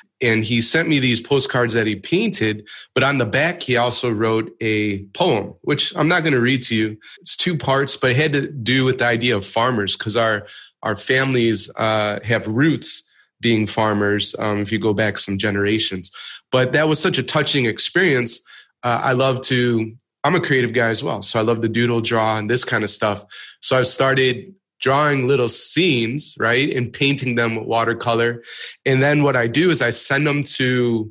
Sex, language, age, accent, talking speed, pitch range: male, English, 20-39, American, 205 wpm, 110-135 Hz